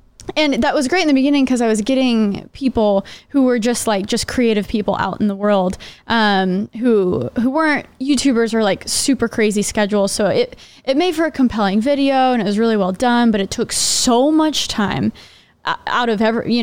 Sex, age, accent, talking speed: female, 20-39, American, 205 wpm